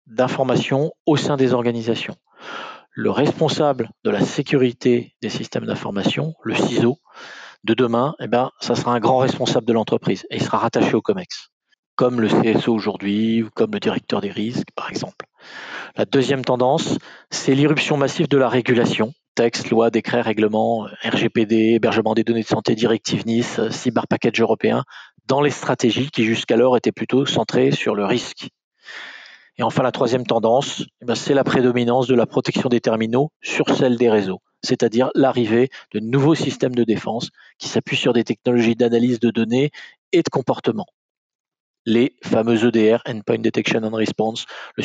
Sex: male